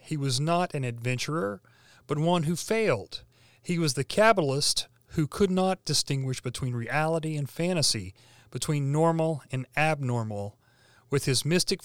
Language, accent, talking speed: English, American, 140 wpm